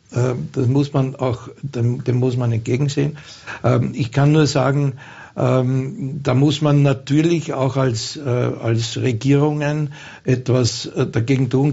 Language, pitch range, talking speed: German, 125-140 Hz, 125 wpm